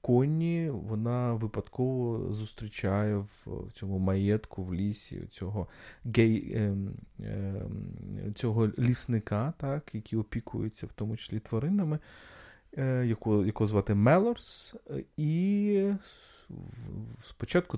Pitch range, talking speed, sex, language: 105-135 Hz, 90 wpm, male, Ukrainian